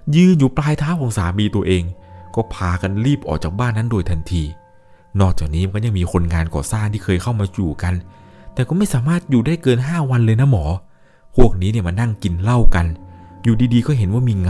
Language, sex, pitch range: Thai, male, 85-120 Hz